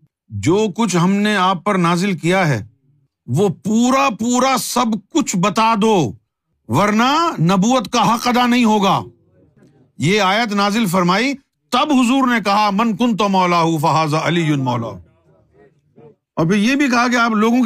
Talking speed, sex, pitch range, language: 155 wpm, male, 130-210 Hz, Urdu